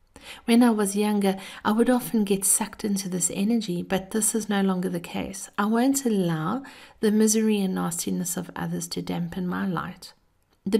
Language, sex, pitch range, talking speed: English, female, 185-225 Hz, 185 wpm